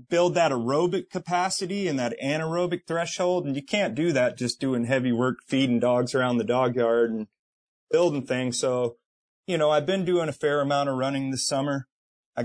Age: 30-49